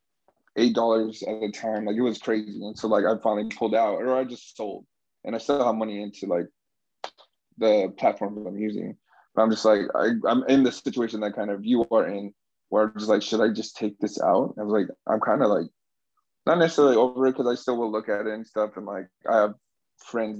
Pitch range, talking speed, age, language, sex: 105-115 Hz, 240 wpm, 20-39, English, male